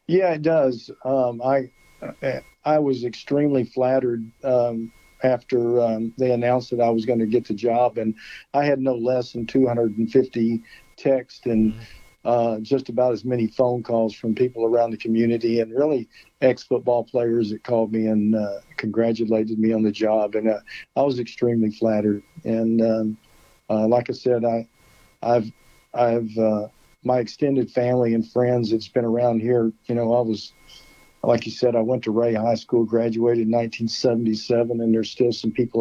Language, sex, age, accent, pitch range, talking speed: English, male, 50-69, American, 110-125 Hz, 175 wpm